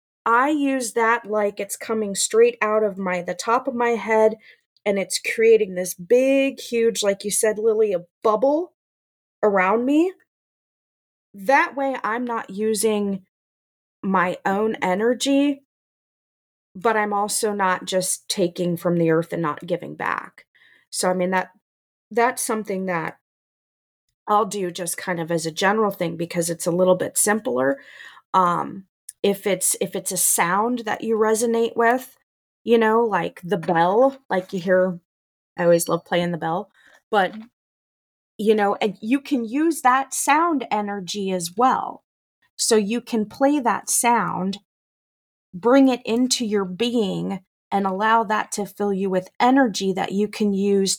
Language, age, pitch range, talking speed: English, 30-49, 185-235 Hz, 155 wpm